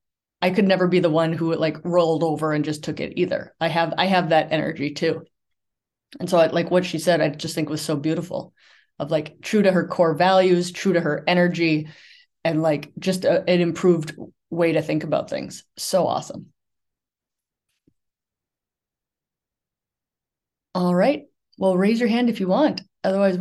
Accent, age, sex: American, 20-39, female